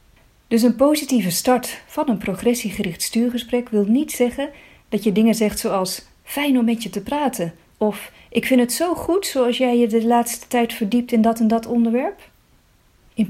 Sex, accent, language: female, Dutch, Dutch